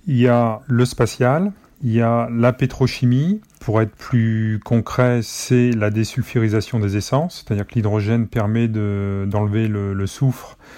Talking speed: 155 wpm